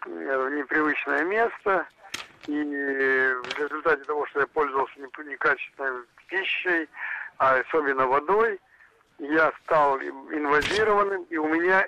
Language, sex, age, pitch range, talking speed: Russian, male, 60-79, 130-195 Hz, 100 wpm